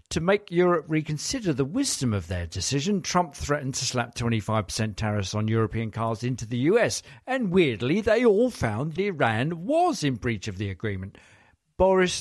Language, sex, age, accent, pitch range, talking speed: English, male, 50-69, British, 115-160 Hz, 165 wpm